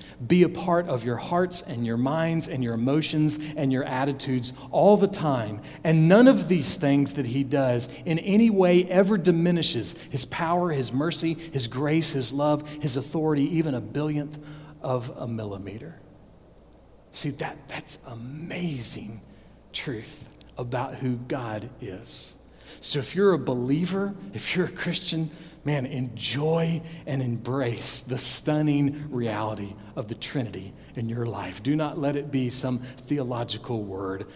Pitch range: 120-155 Hz